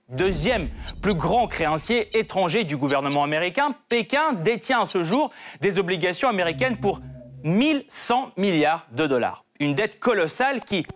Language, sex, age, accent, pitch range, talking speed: French, male, 30-49, French, 165-235 Hz, 135 wpm